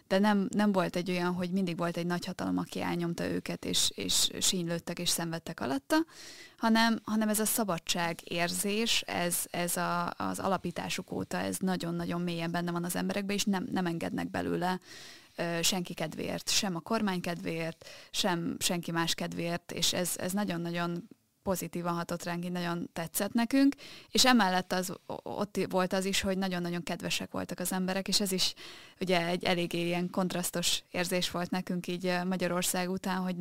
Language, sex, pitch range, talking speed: Hungarian, female, 175-190 Hz, 165 wpm